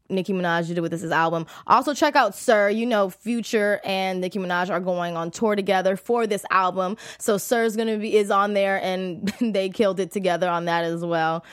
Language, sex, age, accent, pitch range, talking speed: English, female, 20-39, American, 185-245 Hz, 215 wpm